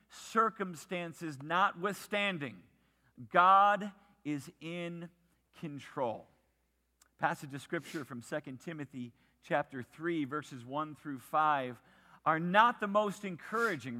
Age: 40-59